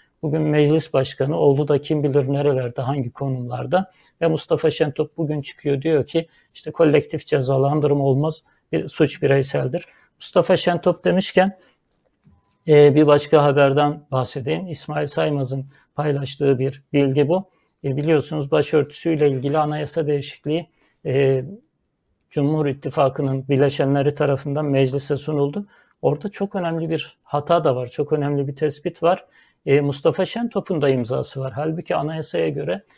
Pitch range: 140-165 Hz